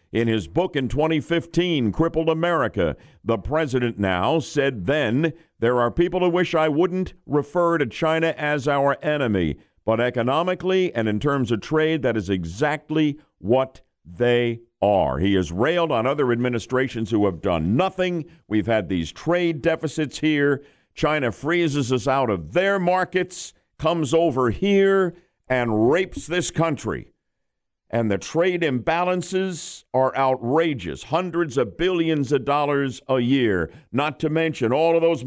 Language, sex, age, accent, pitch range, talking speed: English, male, 50-69, American, 120-165 Hz, 150 wpm